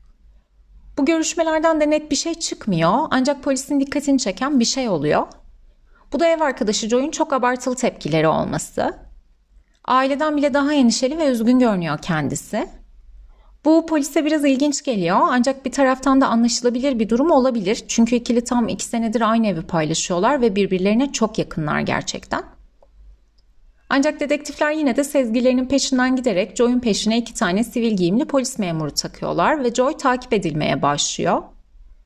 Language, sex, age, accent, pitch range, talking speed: Turkish, female, 30-49, native, 185-280 Hz, 150 wpm